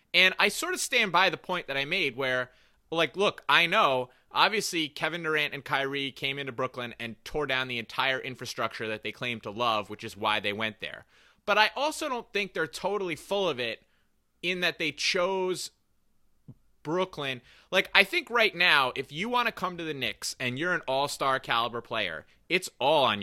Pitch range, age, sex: 130-185 Hz, 30-49, male